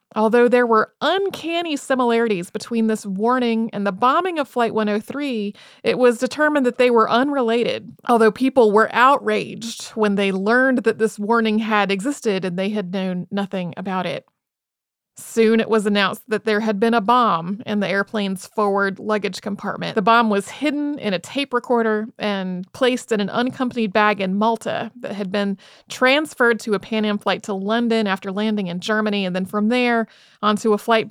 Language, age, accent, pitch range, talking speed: English, 30-49, American, 210-245 Hz, 180 wpm